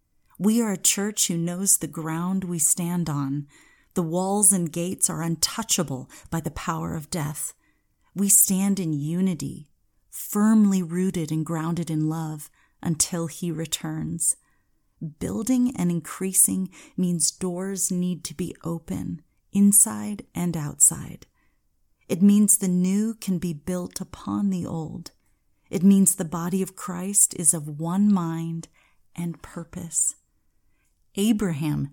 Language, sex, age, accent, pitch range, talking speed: English, female, 30-49, American, 155-190 Hz, 130 wpm